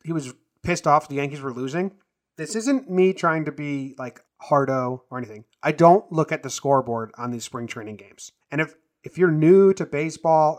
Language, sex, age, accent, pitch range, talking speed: English, male, 30-49, American, 140-185 Hz, 205 wpm